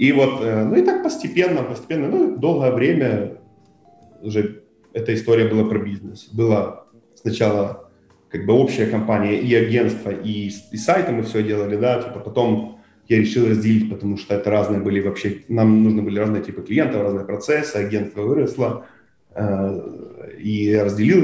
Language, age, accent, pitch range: Russian, 20-39, native, 105-115 Hz